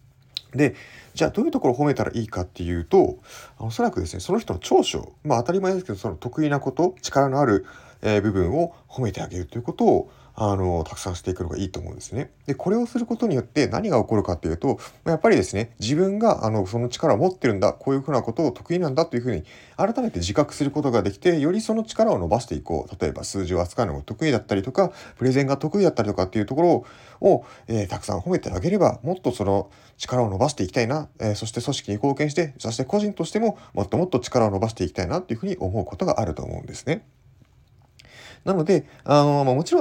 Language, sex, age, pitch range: Japanese, male, 30-49, 100-155 Hz